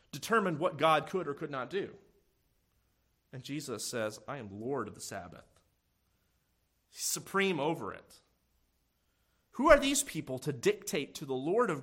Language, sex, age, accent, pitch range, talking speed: English, male, 40-59, American, 105-165 Hz, 155 wpm